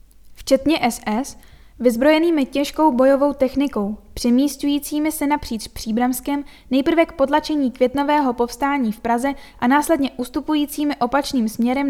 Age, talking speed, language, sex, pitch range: 10-29, 110 wpm, Czech, female, 235-280 Hz